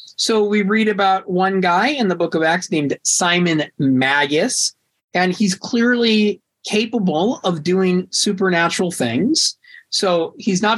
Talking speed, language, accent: 140 wpm, English, American